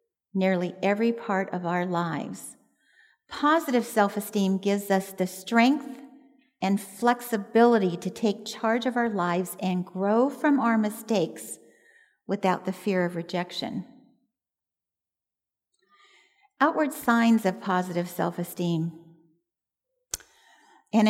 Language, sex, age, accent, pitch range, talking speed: English, female, 50-69, American, 190-260 Hz, 100 wpm